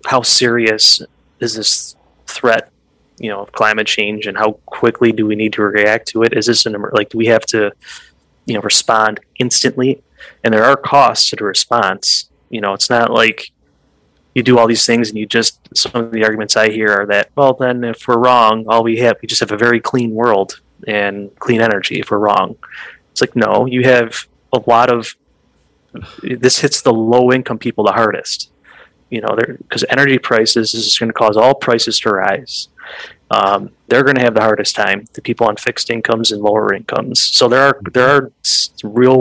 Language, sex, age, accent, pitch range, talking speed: English, male, 20-39, American, 110-120 Hz, 205 wpm